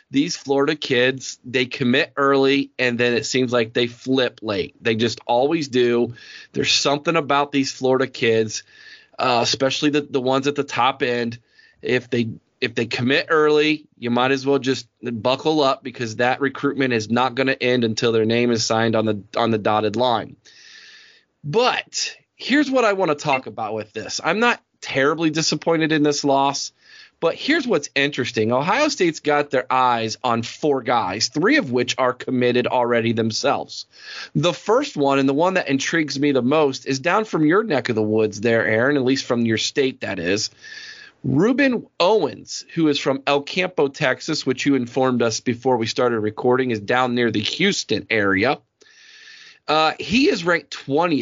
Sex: male